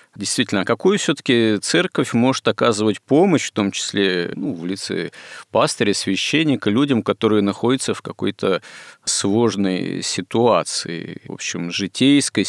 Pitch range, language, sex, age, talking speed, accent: 95-115 Hz, Russian, male, 50-69, 125 wpm, native